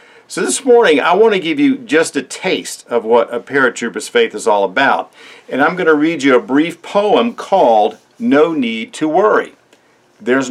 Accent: American